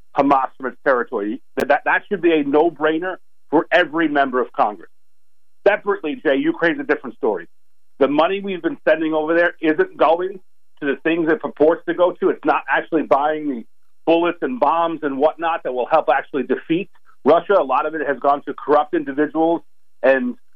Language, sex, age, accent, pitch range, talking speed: English, male, 50-69, American, 145-195 Hz, 180 wpm